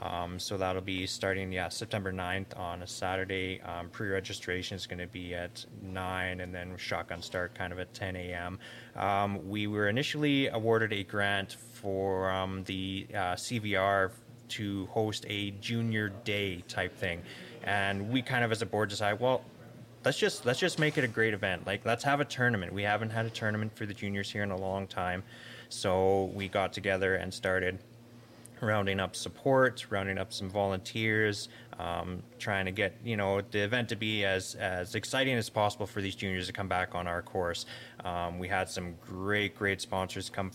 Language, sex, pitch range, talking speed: English, male, 95-115 Hz, 190 wpm